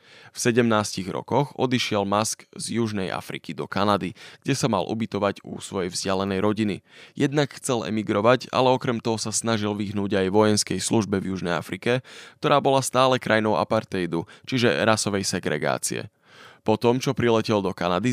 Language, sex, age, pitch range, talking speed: Slovak, male, 20-39, 100-130 Hz, 155 wpm